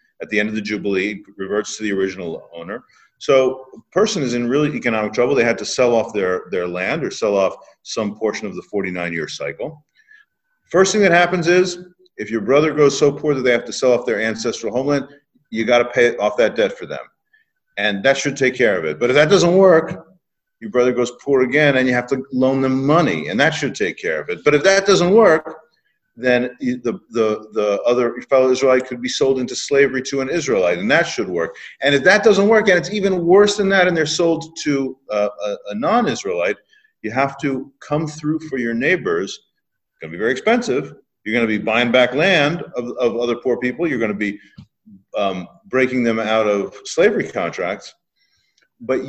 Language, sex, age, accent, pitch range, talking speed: English, male, 40-59, American, 120-180 Hz, 215 wpm